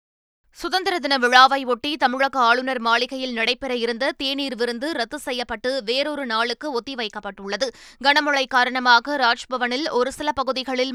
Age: 20-39